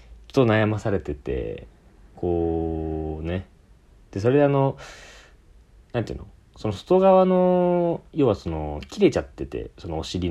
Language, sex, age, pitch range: Japanese, male, 40-59, 80-120 Hz